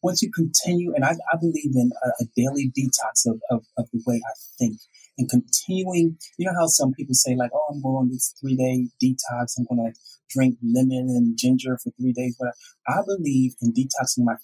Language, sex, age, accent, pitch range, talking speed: English, male, 30-49, American, 125-170 Hz, 210 wpm